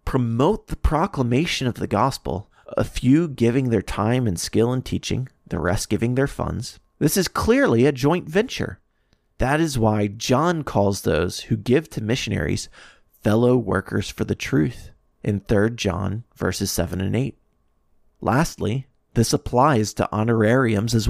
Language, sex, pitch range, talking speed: English, male, 100-130 Hz, 155 wpm